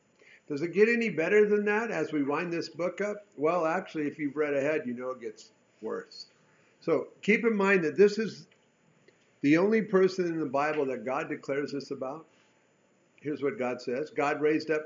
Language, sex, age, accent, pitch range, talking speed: English, male, 50-69, American, 140-190 Hz, 200 wpm